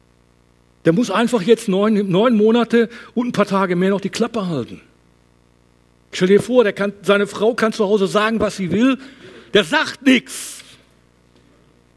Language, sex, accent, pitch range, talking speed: German, male, German, 140-215 Hz, 170 wpm